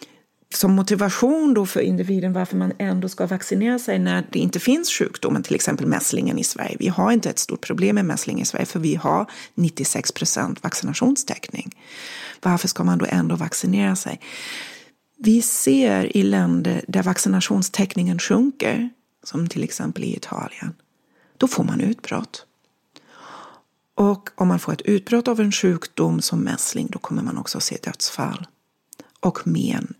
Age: 40-59